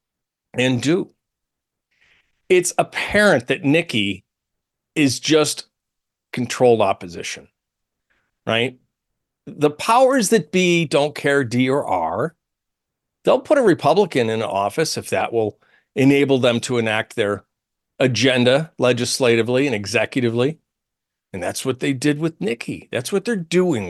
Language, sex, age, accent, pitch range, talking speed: English, male, 50-69, American, 125-185 Hz, 125 wpm